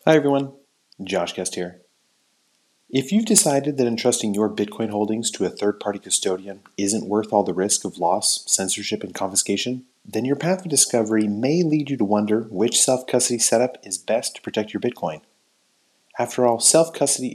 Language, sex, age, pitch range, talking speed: English, male, 30-49, 100-130 Hz, 170 wpm